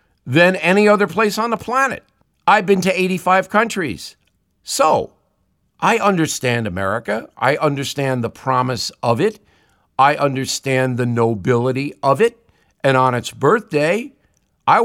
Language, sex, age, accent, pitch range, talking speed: English, male, 50-69, American, 125-180 Hz, 135 wpm